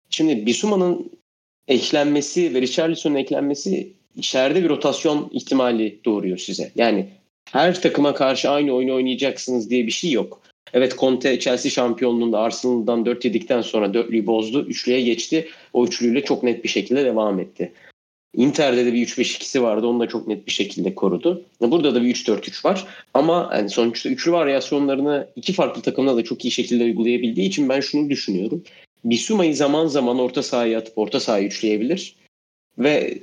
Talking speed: 160 wpm